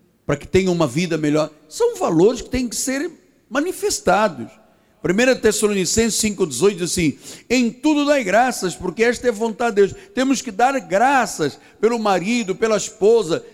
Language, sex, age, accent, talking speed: Portuguese, male, 60-79, Brazilian, 165 wpm